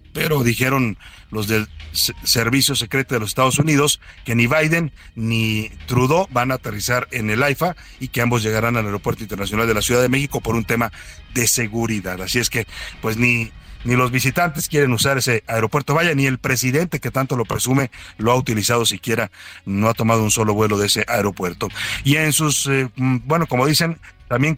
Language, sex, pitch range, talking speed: Spanish, male, 110-140 Hz, 195 wpm